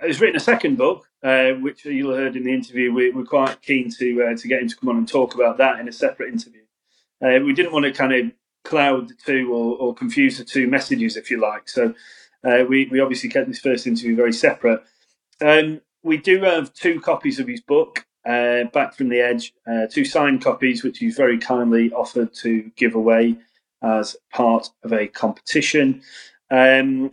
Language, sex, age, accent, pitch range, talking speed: English, male, 30-49, British, 115-140 Hz, 210 wpm